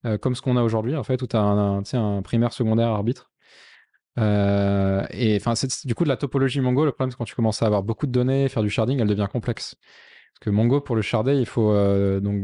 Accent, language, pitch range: French, French, 105-125 Hz